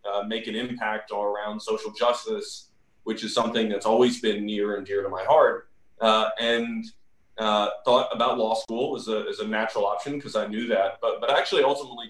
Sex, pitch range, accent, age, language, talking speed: male, 105-115 Hz, American, 30-49, English, 205 wpm